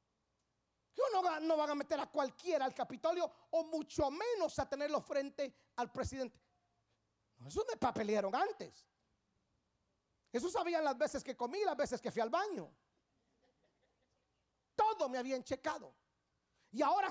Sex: male